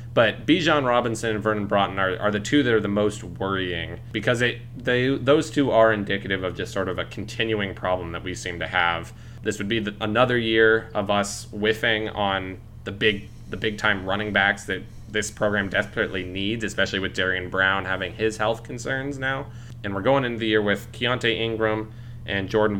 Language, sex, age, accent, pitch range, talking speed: English, male, 20-39, American, 95-115 Hz, 200 wpm